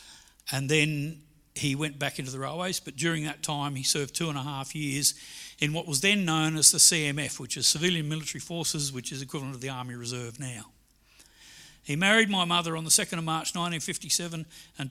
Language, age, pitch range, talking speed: English, 60-79, 135-170 Hz, 205 wpm